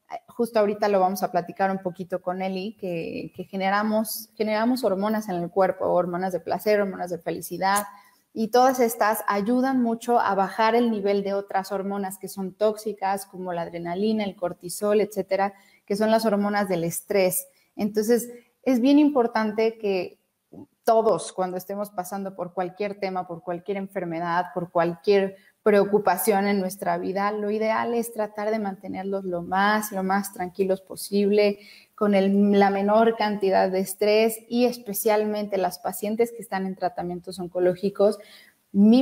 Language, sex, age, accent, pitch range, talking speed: Spanish, female, 30-49, Mexican, 190-220 Hz, 155 wpm